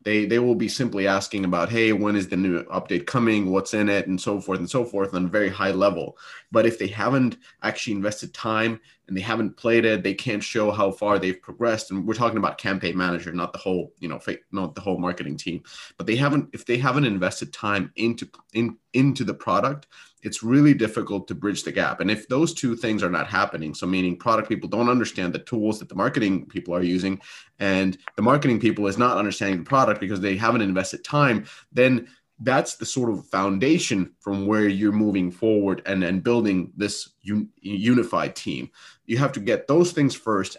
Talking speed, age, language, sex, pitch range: 215 wpm, 30-49, English, male, 95-115 Hz